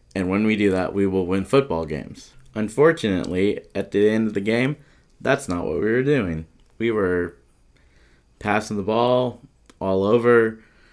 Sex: male